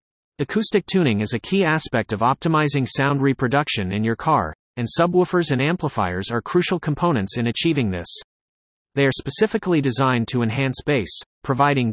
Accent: American